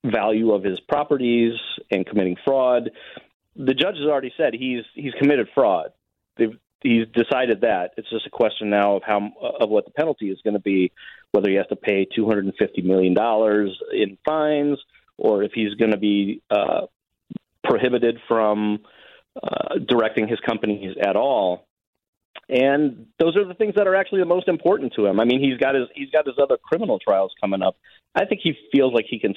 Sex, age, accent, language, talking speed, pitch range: male, 40-59, American, English, 190 wpm, 105-145 Hz